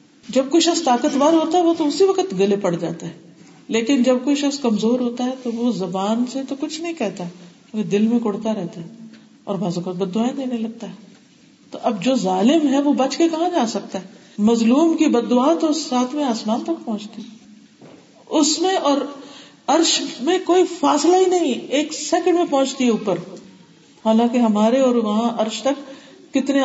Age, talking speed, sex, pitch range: 50-69, 185 wpm, female, 205-280 Hz